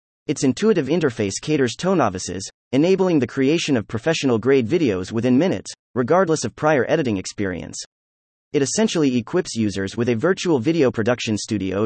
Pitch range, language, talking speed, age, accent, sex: 110-155 Hz, English, 145 wpm, 30-49, American, male